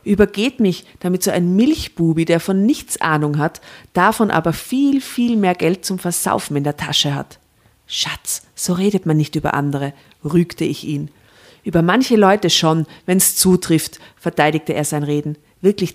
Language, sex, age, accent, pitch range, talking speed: German, female, 40-59, German, 155-210 Hz, 165 wpm